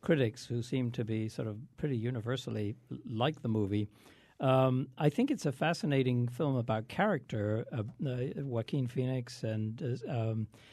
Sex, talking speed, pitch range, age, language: male, 155 wpm, 115-140 Hz, 60-79, English